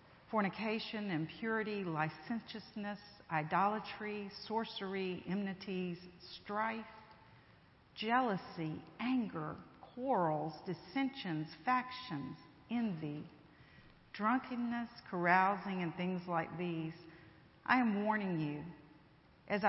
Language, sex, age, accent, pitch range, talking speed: English, female, 50-69, American, 155-210 Hz, 75 wpm